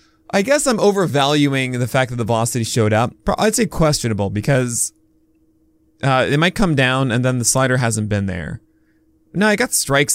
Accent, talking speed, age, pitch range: American, 185 wpm, 20-39, 110-160 Hz